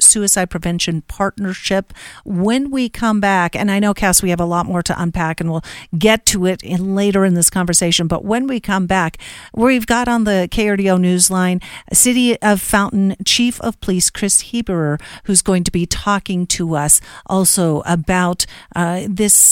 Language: English